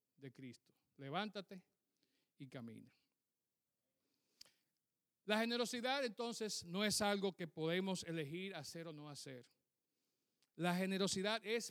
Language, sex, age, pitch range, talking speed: Spanish, male, 50-69, 150-195 Hz, 110 wpm